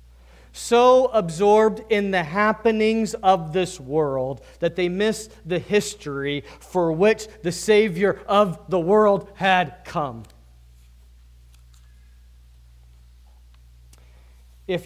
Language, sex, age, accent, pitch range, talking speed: English, male, 40-59, American, 125-205 Hz, 95 wpm